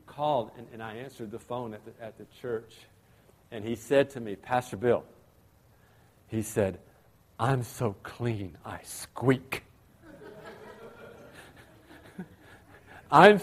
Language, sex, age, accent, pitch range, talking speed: English, male, 50-69, American, 110-155 Hz, 120 wpm